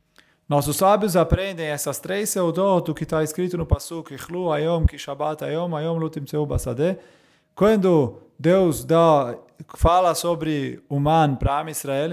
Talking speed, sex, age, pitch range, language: 130 wpm, male, 20-39, 145-175 Hz, English